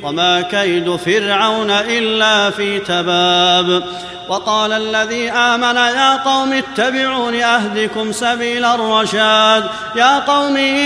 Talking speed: 95 wpm